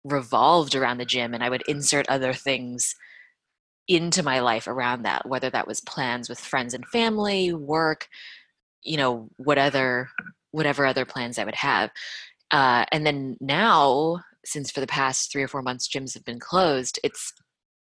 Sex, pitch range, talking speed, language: female, 130-155 Hz, 170 wpm, English